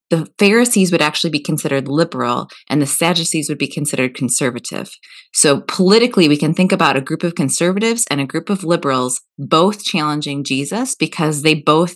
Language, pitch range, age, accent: English, 145-175 Hz, 20-39, American